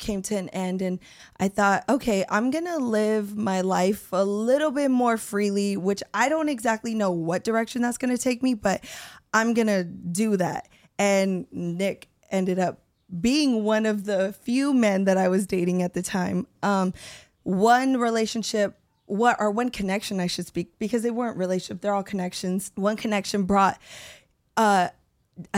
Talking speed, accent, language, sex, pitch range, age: 170 wpm, American, English, female, 190-225 Hz, 20-39